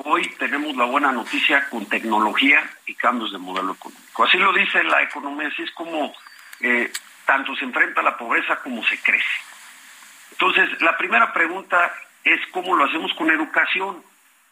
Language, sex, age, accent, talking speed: Spanish, male, 50-69, Mexican, 165 wpm